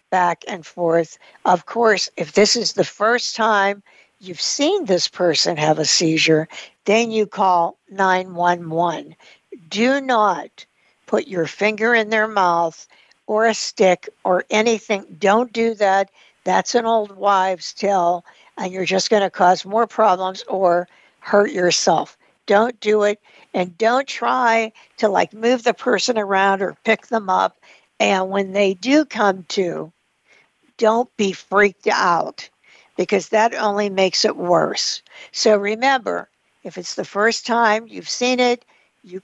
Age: 60-79